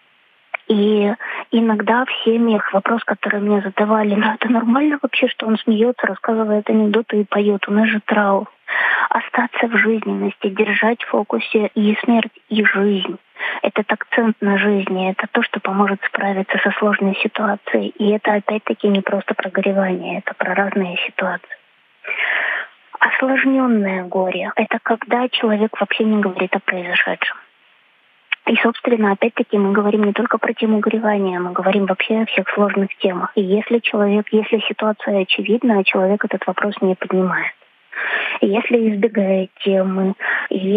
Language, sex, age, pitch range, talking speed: Ukrainian, female, 20-39, 200-225 Hz, 145 wpm